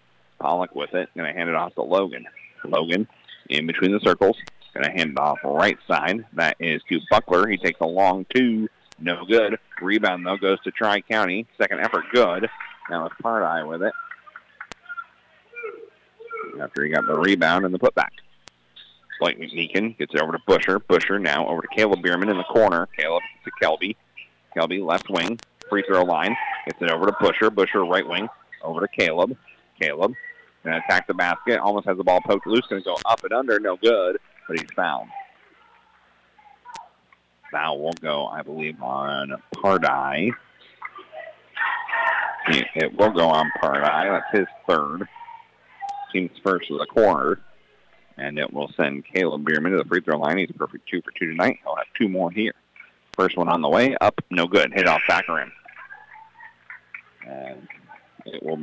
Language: English